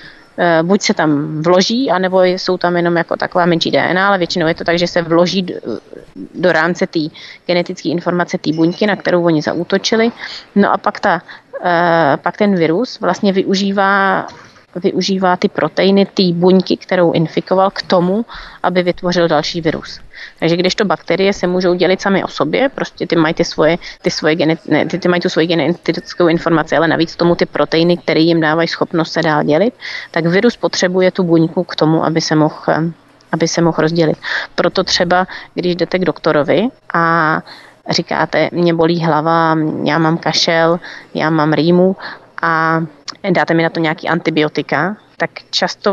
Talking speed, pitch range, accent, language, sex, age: 160 wpm, 165-185 Hz, native, Czech, female, 30-49